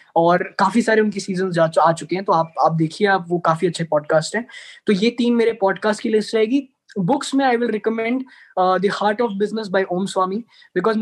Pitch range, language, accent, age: 200-255 Hz, Hindi, native, 20-39